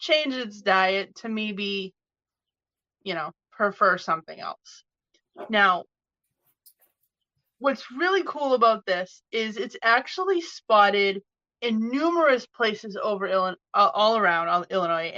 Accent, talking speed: American, 110 wpm